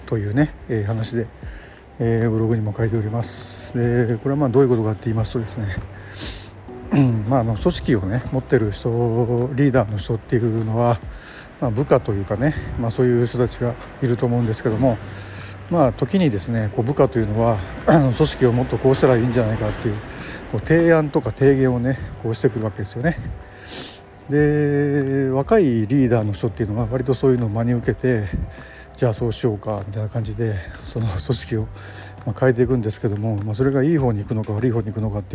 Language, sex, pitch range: Japanese, male, 105-130 Hz